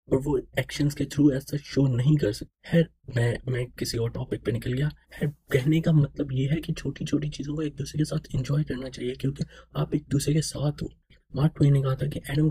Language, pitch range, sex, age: Urdu, 130-155 Hz, male, 20-39